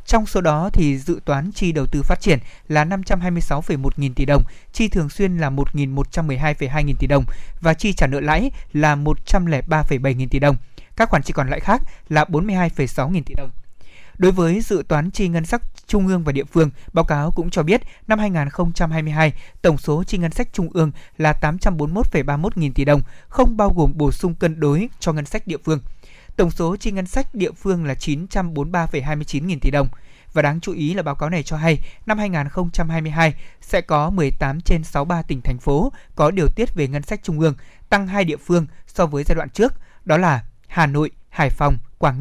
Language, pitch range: Vietnamese, 145-180 Hz